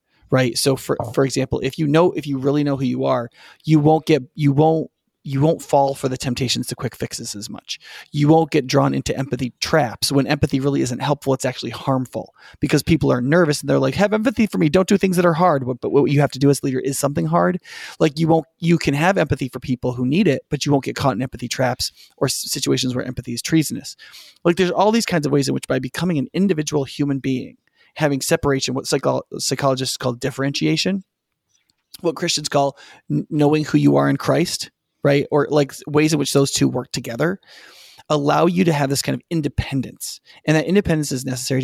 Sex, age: male, 30-49